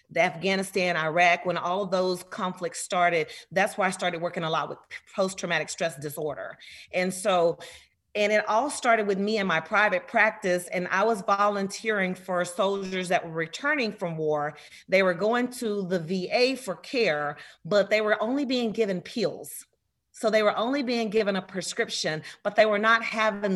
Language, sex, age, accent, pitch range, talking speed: English, female, 40-59, American, 180-225 Hz, 180 wpm